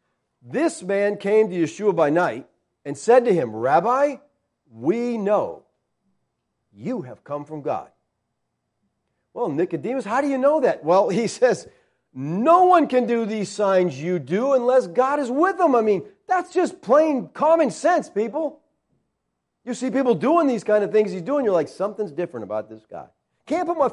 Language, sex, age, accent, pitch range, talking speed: English, male, 40-59, American, 170-260 Hz, 175 wpm